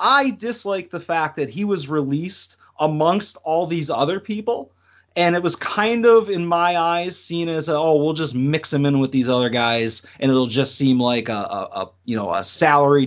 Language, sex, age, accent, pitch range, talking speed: English, male, 30-49, American, 130-175 Hz, 205 wpm